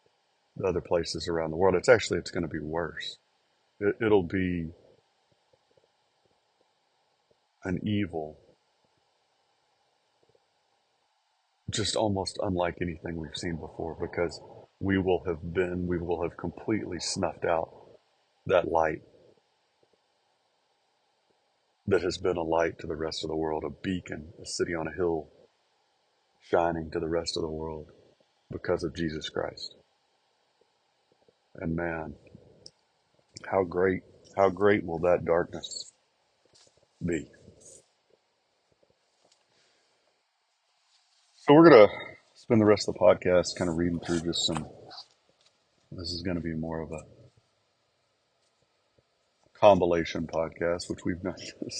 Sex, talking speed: male, 120 wpm